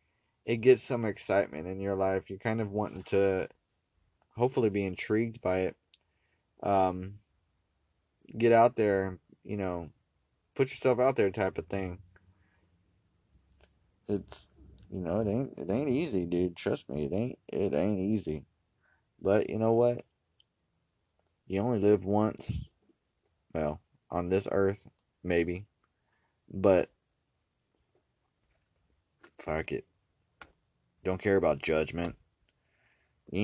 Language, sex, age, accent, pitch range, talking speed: English, male, 20-39, American, 90-110 Hz, 120 wpm